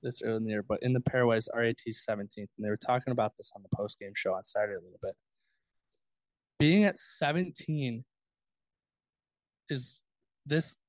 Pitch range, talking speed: 115-145 Hz, 170 wpm